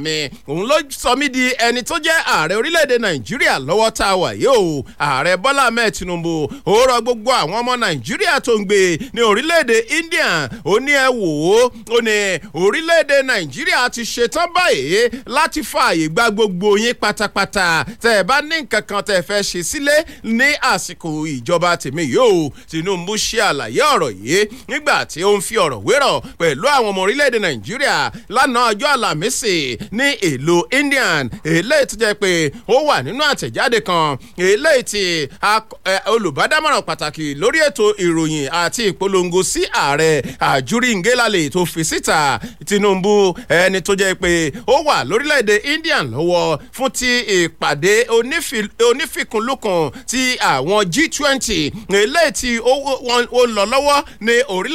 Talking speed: 170 wpm